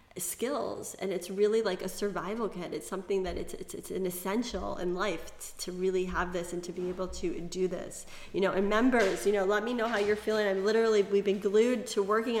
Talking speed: 235 wpm